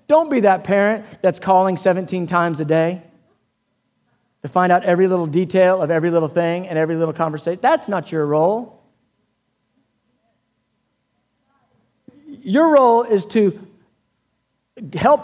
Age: 40-59